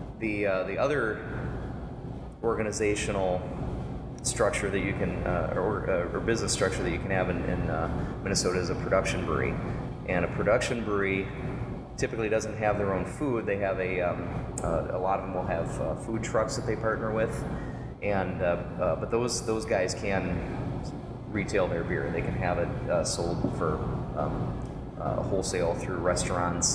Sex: male